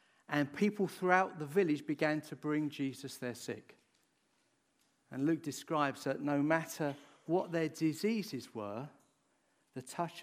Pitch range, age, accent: 130-165 Hz, 50-69, British